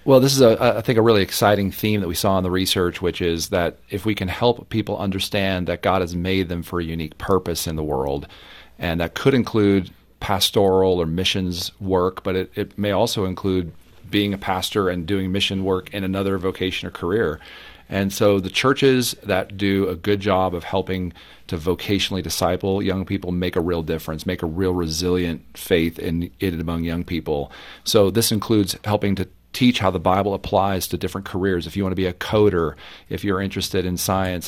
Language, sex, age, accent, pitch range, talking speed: English, male, 40-59, American, 90-100 Hz, 205 wpm